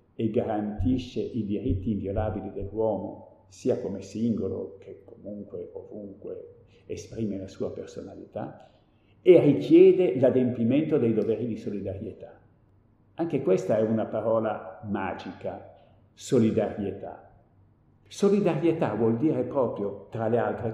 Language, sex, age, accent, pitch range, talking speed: Italian, male, 60-79, native, 100-165 Hz, 105 wpm